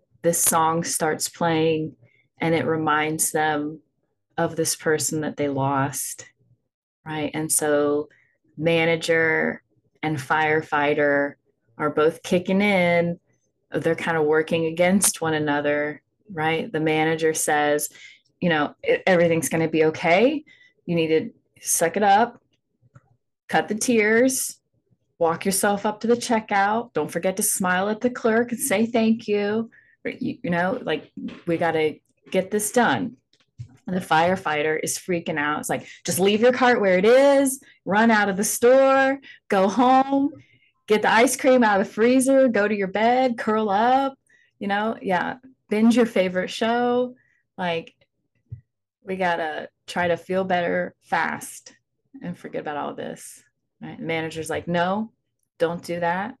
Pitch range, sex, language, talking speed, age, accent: 155-225 Hz, female, English, 150 wpm, 20-39, American